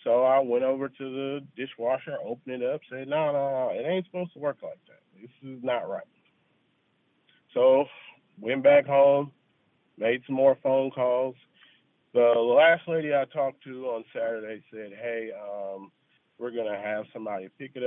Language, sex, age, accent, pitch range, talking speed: English, male, 40-59, American, 110-140 Hz, 175 wpm